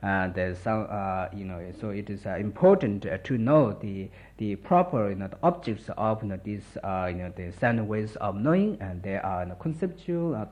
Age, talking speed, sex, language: 50-69, 245 wpm, male, Italian